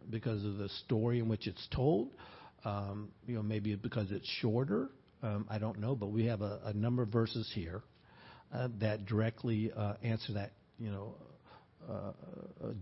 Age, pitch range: 60-79, 100-120 Hz